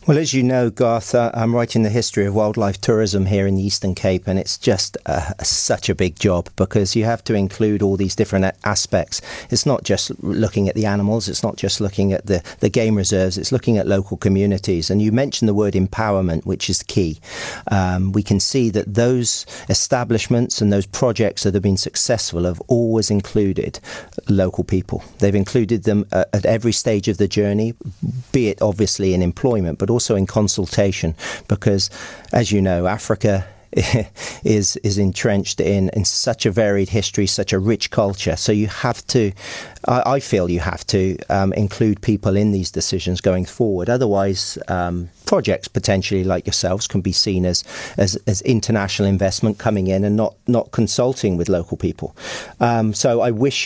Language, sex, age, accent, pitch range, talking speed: English, male, 40-59, British, 95-110 Hz, 185 wpm